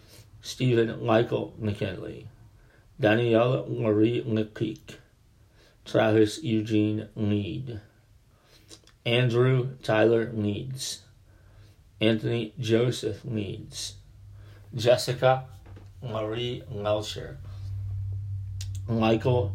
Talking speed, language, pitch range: 60 wpm, English, 100-115 Hz